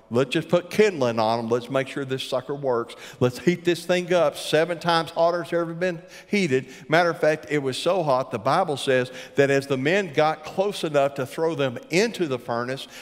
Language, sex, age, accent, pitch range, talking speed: English, male, 60-79, American, 115-165 Hz, 215 wpm